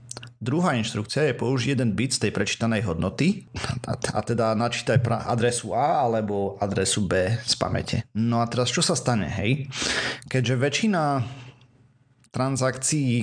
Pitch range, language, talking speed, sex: 110-130 Hz, Slovak, 135 wpm, male